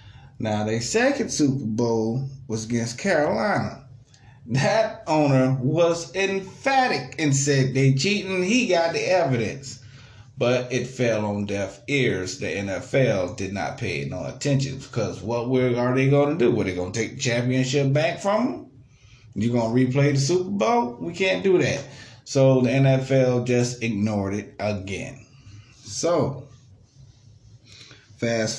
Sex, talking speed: male, 145 wpm